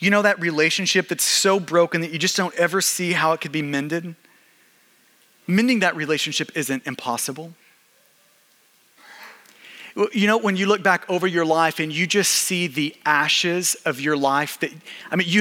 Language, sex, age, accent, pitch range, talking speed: English, male, 30-49, American, 150-190 Hz, 175 wpm